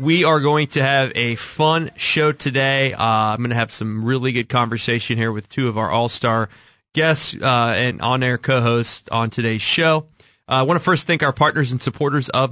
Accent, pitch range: American, 115-145 Hz